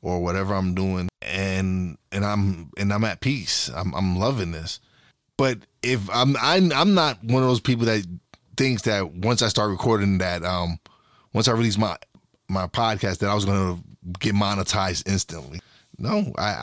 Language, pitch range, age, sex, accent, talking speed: English, 95-125 Hz, 20-39, male, American, 180 wpm